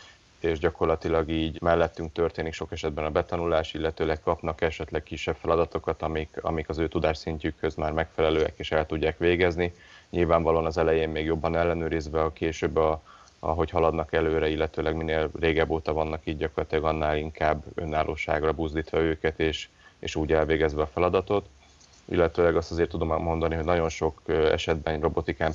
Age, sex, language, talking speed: 30-49, male, Hungarian, 155 wpm